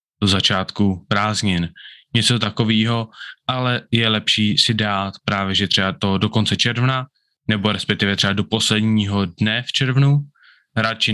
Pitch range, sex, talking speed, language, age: 100-120 Hz, male, 140 wpm, Czech, 20-39